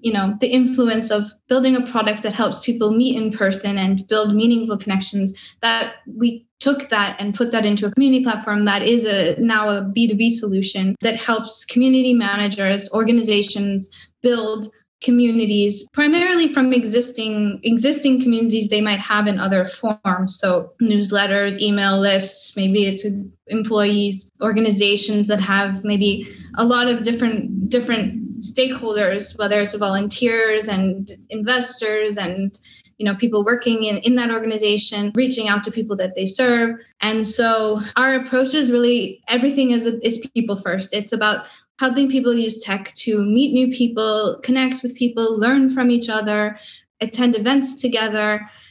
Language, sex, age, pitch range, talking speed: English, female, 10-29, 205-240 Hz, 150 wpm